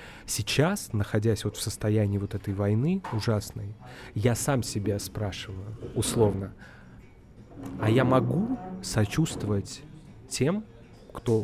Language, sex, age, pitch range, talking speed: Russian, male, 20-39, 105-125 Hz, 105 wpm